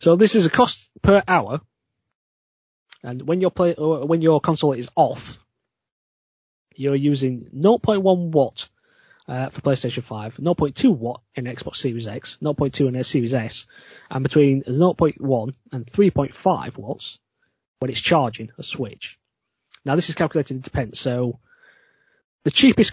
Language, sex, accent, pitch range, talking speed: English, male, British, 120-165 Hz, 140 wpm